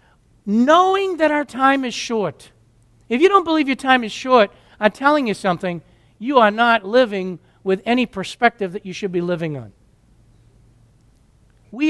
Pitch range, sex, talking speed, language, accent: 160-245 Hz, male, 160 wpm, English, American